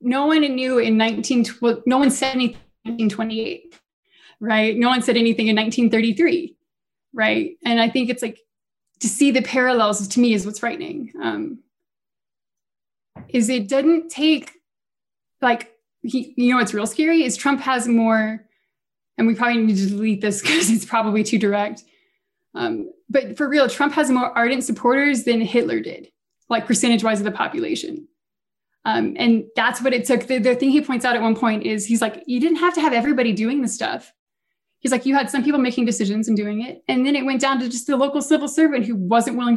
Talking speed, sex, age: 195 wpm, female, 20-39